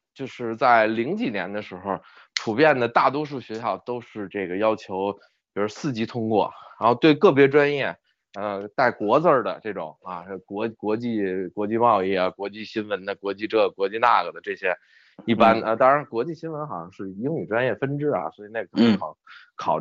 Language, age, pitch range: Chinese, 20-39, 105-140 Hz